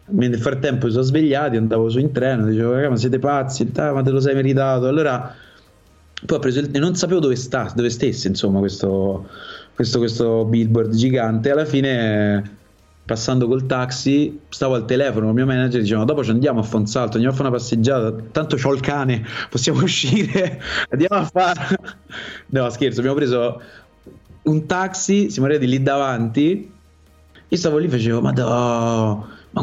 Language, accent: Italian, native